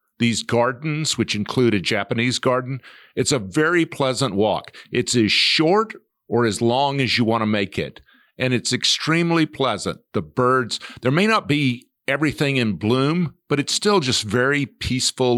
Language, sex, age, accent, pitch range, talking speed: English, male, 50-69, American, 115-145 Hz, 170 wpm